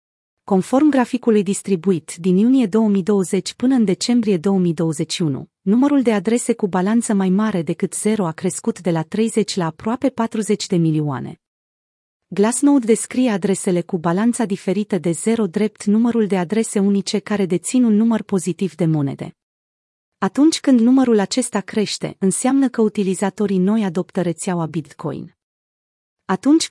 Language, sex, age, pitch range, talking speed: Romanian, female, 30-49, 180-225 Hz, 140 wpm